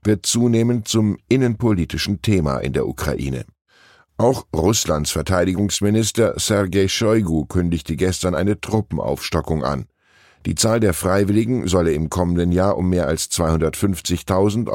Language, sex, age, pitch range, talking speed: German, male, 10-29, 80-110 Hz, 120 wpm